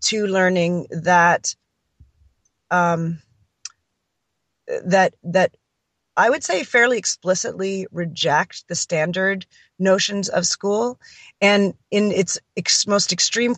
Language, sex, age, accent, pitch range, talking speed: English, female, 30-49, American, 165-190 Hz, 95 wpm